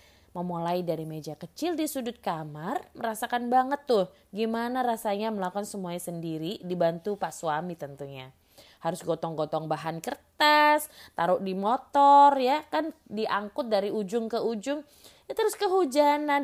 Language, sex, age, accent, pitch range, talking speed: Indonesian, female, 20-39, native, 170-245 Hz, 130 wpm